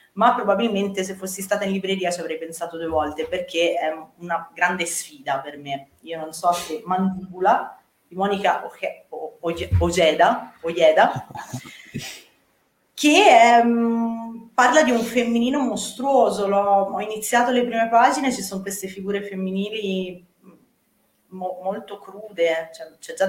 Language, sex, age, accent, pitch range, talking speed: Italian, female, 30-49, native, 155-210 Hz, 135 wpm